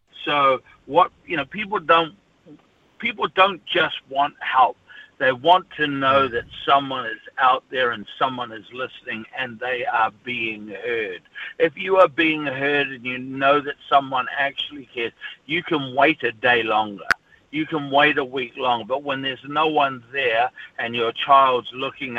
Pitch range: 125-160 Hz